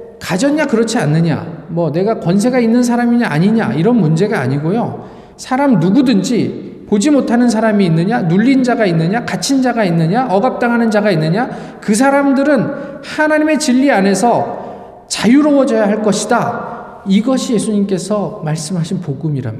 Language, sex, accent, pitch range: Korean, male, native, 140-230 Hz